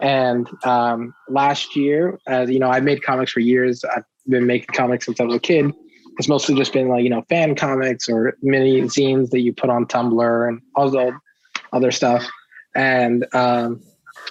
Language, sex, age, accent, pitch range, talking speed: English, male, 20-39, American, 125-140 Hz, 190 wpm